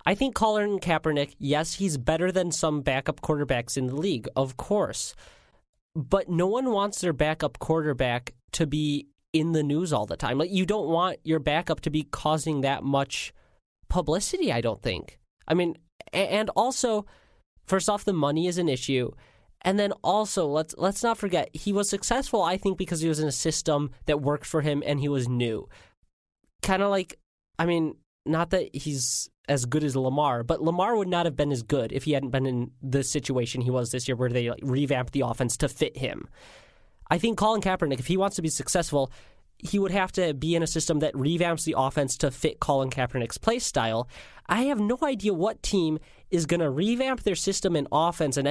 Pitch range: 140-190 Hz